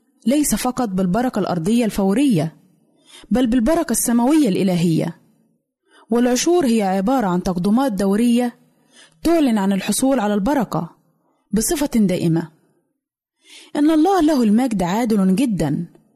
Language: Arabic